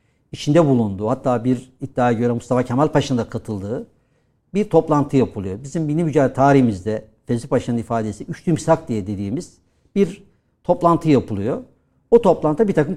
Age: 60-79